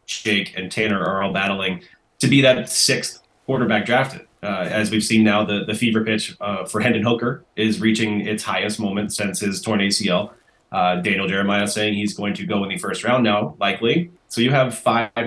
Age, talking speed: 20-39, 205 wpm